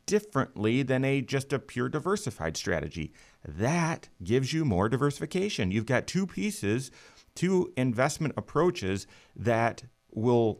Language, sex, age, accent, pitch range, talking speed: English, male, 30-49, American, 95-130 Hz, 125 wpm